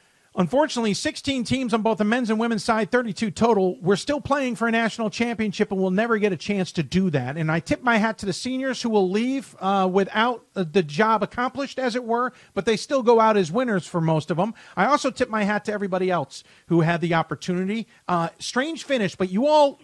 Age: 40-59